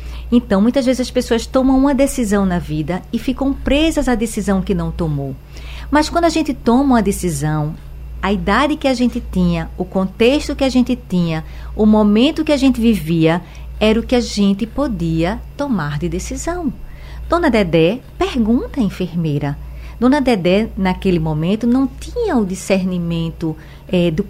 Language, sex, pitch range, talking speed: Portuguese, female, 175-250 Hz, 165 wpm